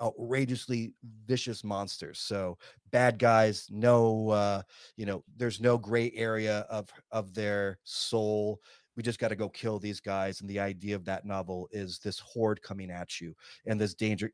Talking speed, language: 170 wpm, English